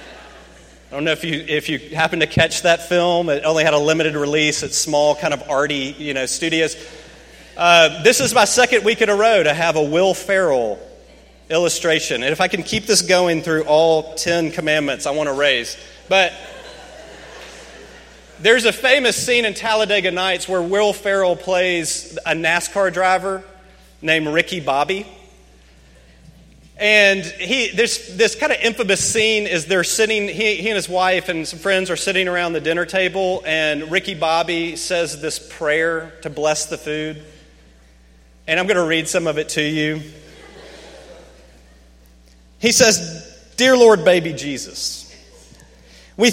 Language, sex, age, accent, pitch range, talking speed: English, male, 30-49, American, 155-195 Hz, 165 wpm